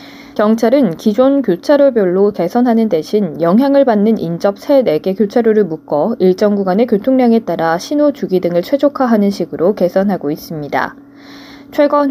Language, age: Korean, 20-39